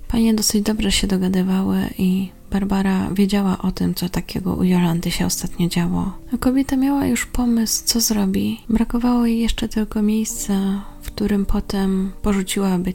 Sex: female